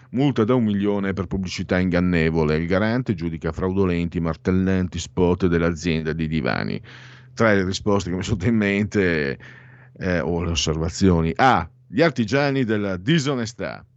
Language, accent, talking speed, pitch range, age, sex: Italian, native, 140 wpm, 90-125 Hz, 50-69, male